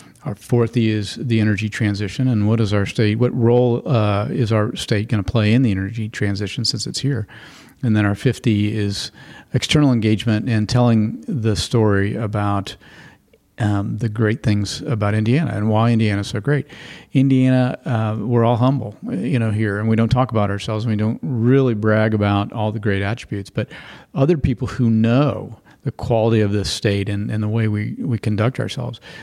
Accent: American